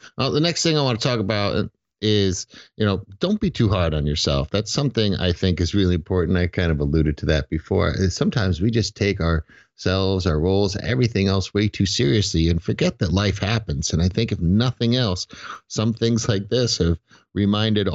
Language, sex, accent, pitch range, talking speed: English, male, American, 85-110 Hz, 205 wpm